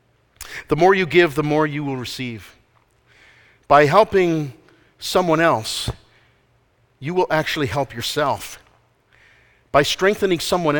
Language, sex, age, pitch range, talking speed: English, male, 50-69, 115-150 Hz, 115 wpm